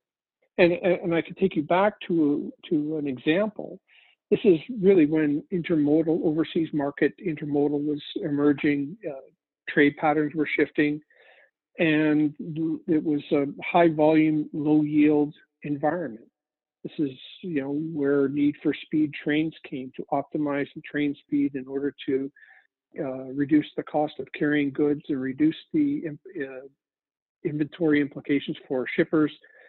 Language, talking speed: English, 135 wpm